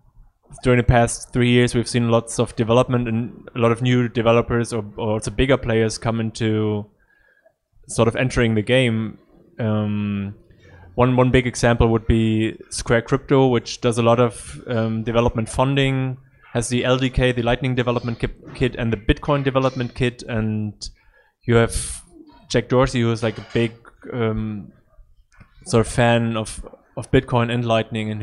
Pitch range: 110-125 Hz